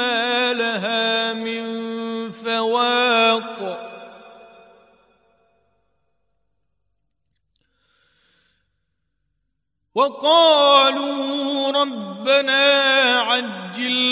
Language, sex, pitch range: Arabic, male, 235-275 Hz